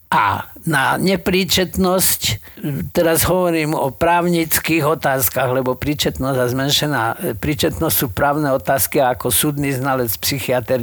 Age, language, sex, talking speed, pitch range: 50-69, Slovak, male, 115 wpm, 125-160 Hz